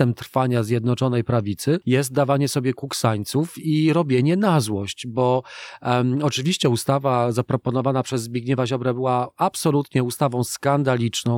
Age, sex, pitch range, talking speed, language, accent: 40-59, male, 125-145 Hz, 120 wpm, Polish, native